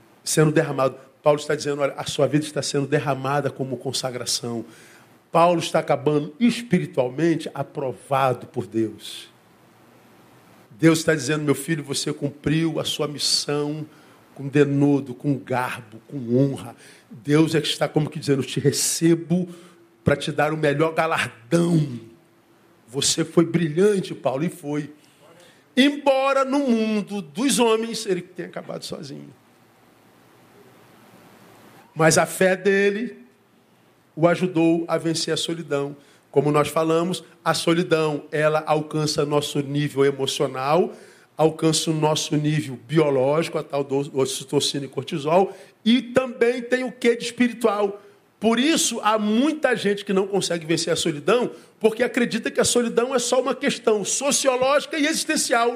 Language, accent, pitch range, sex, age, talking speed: Portuguese, Brazilian, 145-210 Hz, male, 50-69, 140 wpm